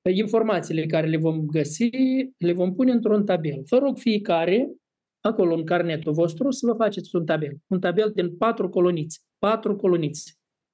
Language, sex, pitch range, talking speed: Romanian, male, 165-215 Hz, 160 wpm